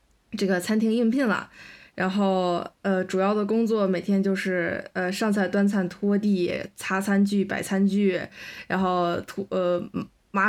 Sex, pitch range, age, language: female, 195-235 Hz, 20-39, Chinese